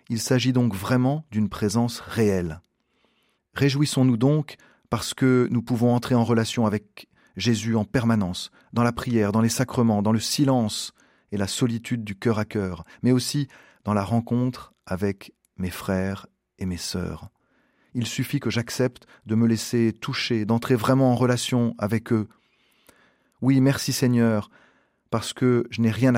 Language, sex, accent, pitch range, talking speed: French, male, French, 105-125 Hz, 160 wpm